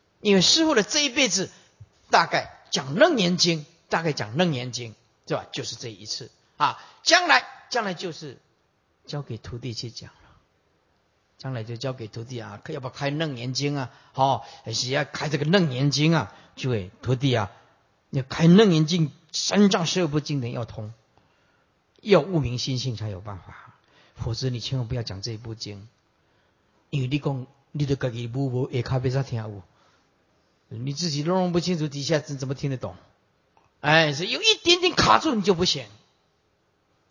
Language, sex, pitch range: Chinese, male, 115-165 Hz